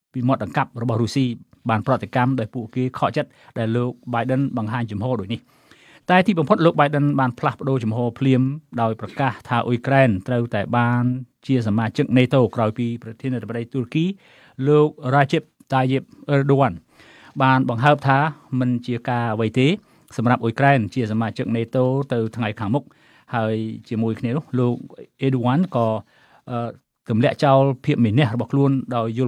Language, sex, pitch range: English, male, 120-140 Hz